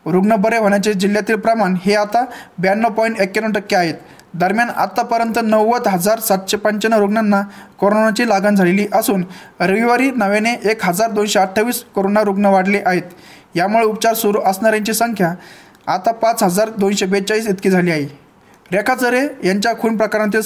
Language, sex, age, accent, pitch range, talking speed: Marathi, male, 20-39, native, 190-220 Hz, 130 wpm